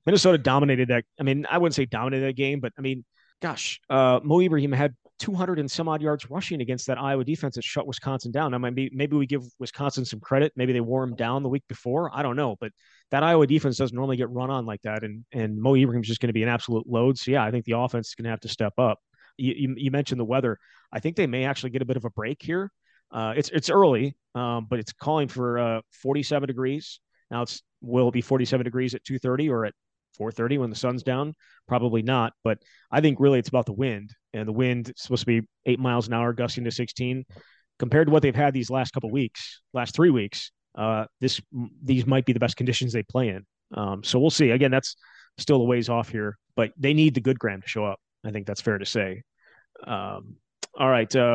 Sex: male